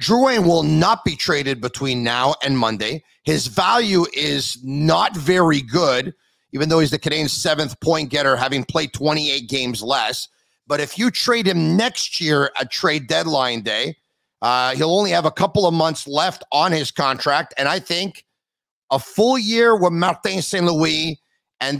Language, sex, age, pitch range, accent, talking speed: English, male, 40-59, 145-195 Hz, American, 175 wpm